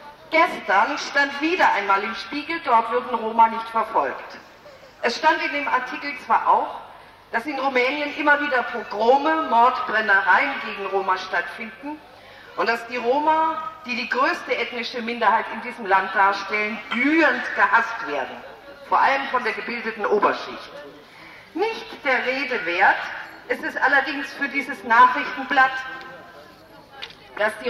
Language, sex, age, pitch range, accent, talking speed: German, female, 50-69, 230-300 Hz, German, 135 wpm